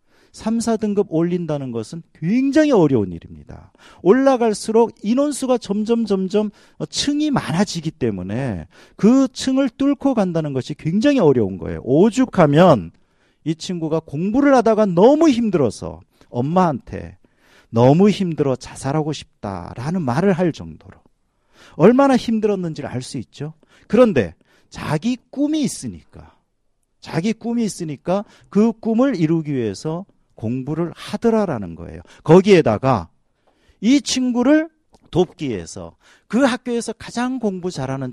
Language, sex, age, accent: Korean, male, 40-59, native